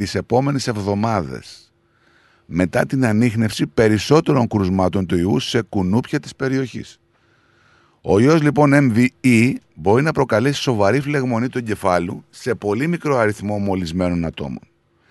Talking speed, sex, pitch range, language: 125 wpm, male, 105-145 Hz, Greek